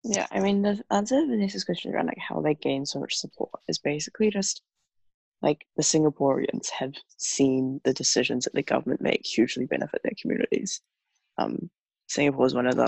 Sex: female